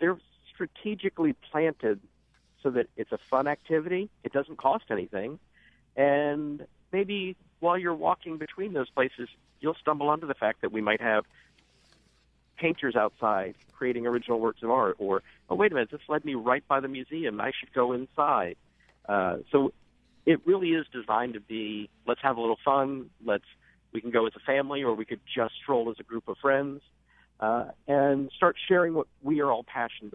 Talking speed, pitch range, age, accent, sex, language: 185 wpm, 115-145 Hz, 50-69, American, male, English